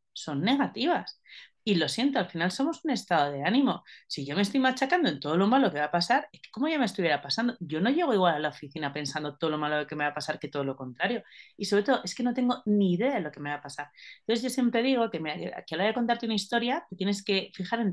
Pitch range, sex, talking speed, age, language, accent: 150-225 Hz, female, 280 wpm, 30-49, Spanish, Spanish